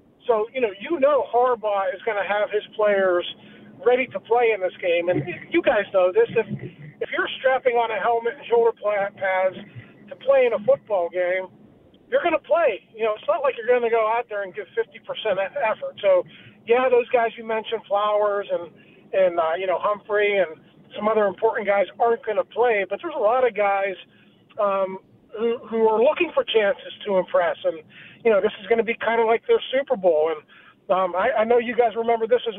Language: English